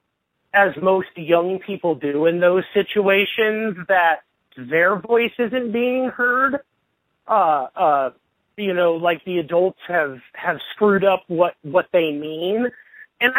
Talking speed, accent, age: 135 wpm, American, 40-59